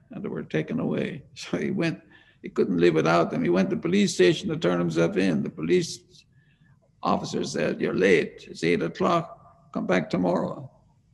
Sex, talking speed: male, 190 wpm